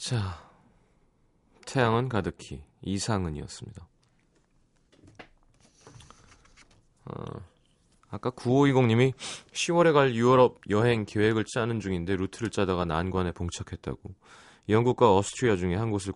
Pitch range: 90-130 Hz